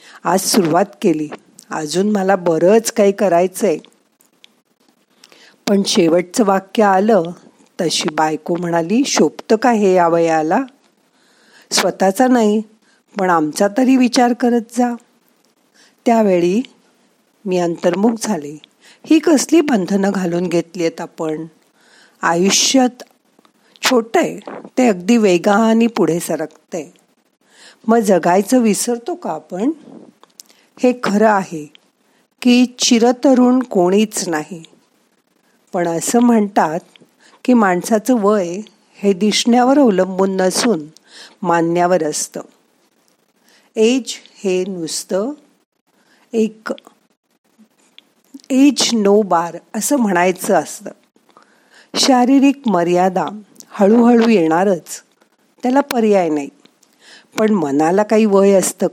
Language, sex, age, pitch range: Marathi, female, 50-69, 180-245 Hz